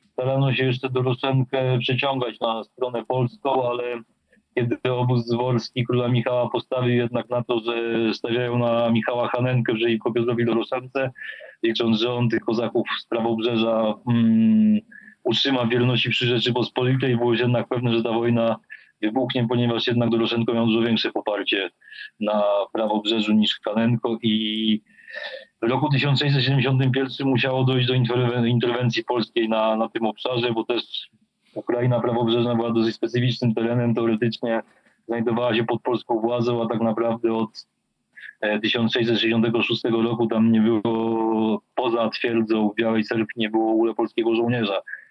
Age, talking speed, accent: 40-59, 140 wpm, native